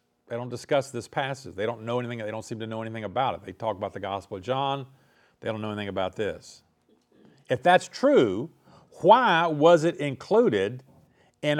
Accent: American